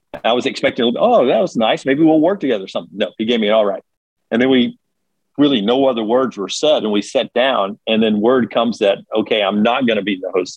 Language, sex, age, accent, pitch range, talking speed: English, male, 50-69, American, 105-125 Hz, 260 wpm